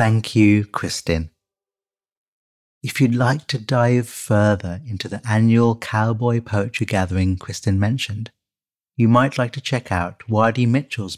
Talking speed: 135 wpm